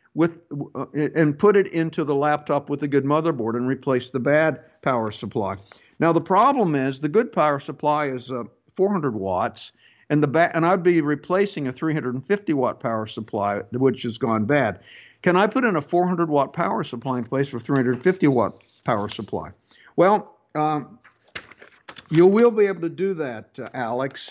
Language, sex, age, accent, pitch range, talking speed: English, male, 60-79, American, 125-170 Hz, 165 wpm